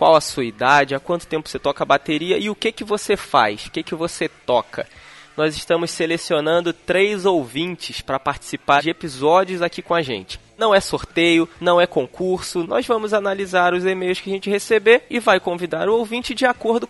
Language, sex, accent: Portuguese, male, Brazilian